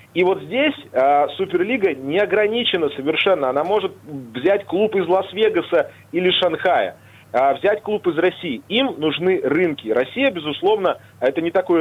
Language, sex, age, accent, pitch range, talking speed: Russian, male, 30-49, native, 160-250 Hz, 145 wpm